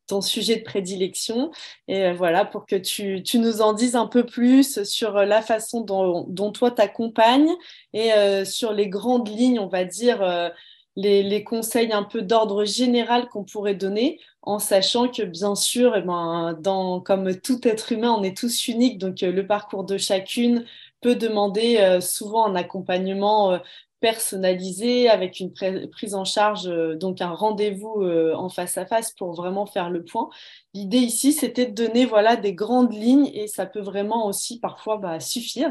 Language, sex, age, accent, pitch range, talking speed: French, female, 20-39, French, 185-225 Hz, 180 wpm